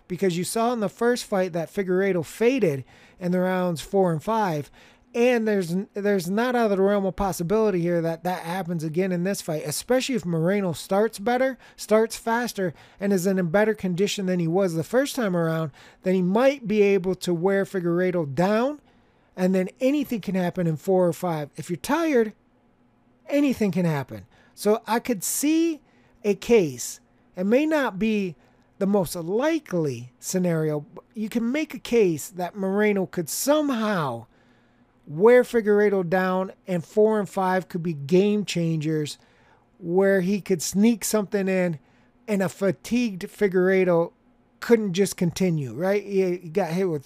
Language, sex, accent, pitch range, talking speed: English, male, American, 170-220 Hz, 165 wpm